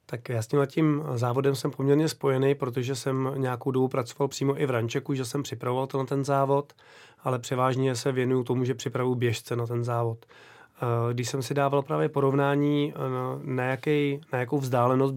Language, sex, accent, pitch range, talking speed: Czech, male, native, 120-135 Hz, 185 wpm